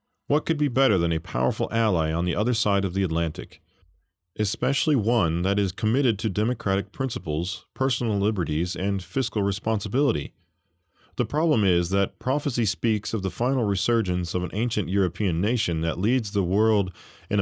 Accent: American